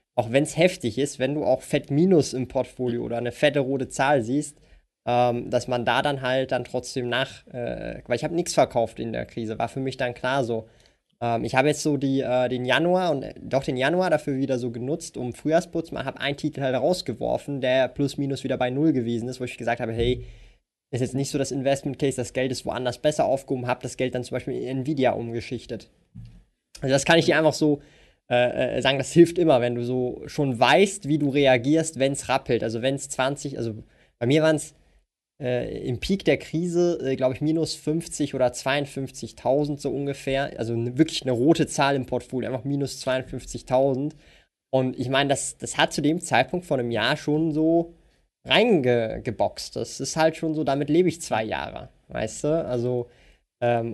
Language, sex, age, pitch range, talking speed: German, male, 20-39, 125-150 Hz, 205 wpm